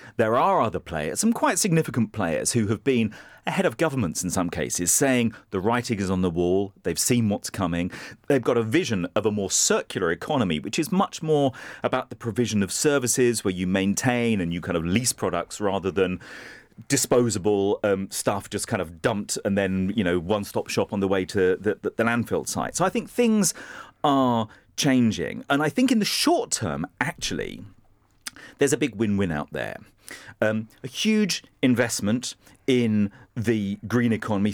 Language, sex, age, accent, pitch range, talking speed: English, male, 40-59, British, 100-130 Hz, 185 wpm